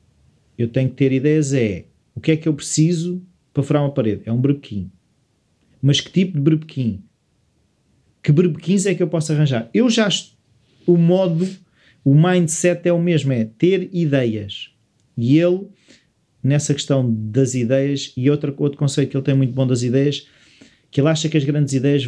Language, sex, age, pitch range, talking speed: Portuguese, male, 30-49, 125-160 Hz, 185 wpm